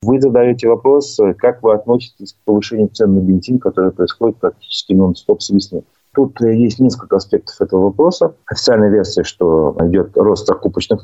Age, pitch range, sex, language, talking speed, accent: 30-49, 95-125 Hz, male, Russian, 145 wpm, native